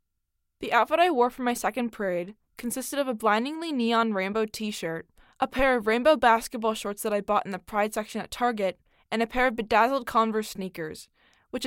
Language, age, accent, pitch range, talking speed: English, 10-29, American, 195-245 Hz, 195 wpm